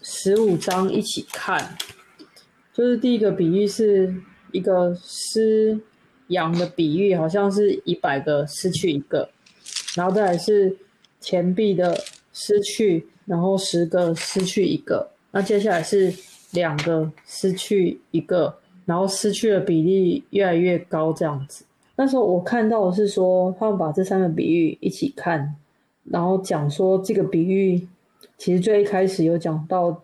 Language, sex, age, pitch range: Chinese, female, 20-39, 170-200 Hz